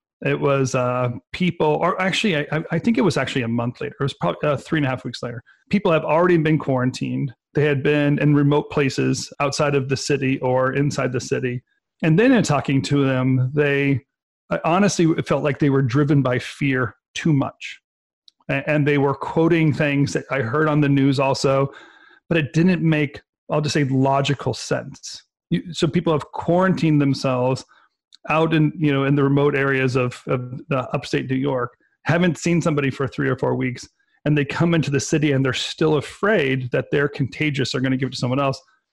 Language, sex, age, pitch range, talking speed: English, male, 40-59, 130-155 Hz, 205 wpm